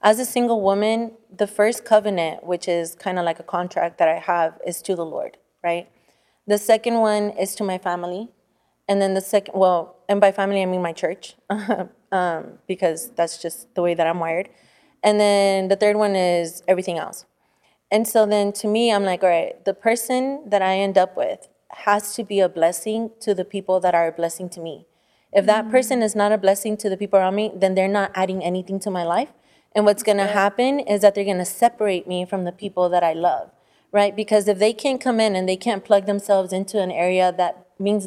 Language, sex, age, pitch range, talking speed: English, female, 20-39, 185-210 Hz, 220 wpm